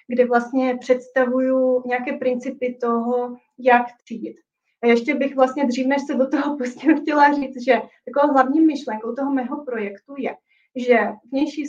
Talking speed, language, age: 155 wpm, Czech, 30-49